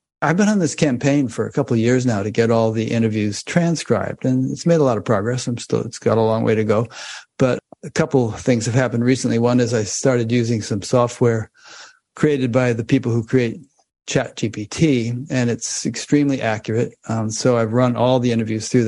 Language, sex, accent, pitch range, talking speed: English, male, American, 110-130 Hz, 215 wpm